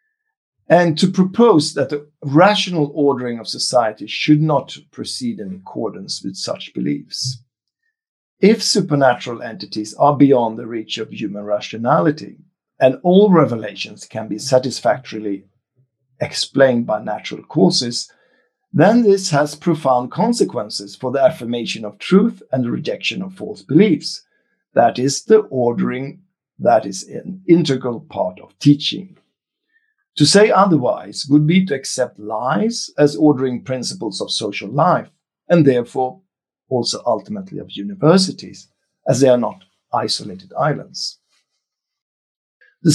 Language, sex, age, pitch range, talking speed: English, male, 50-69, 125-195 Hz, 125 wpm